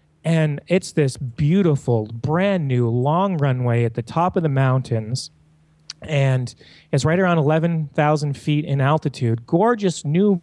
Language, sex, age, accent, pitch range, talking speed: English, male, 30-49, American, 130-160 Hz, 130 wpm